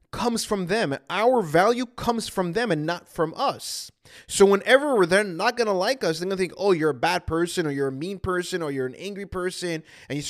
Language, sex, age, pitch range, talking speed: English, male, 20-39, 175-240 Hz, 225 wpm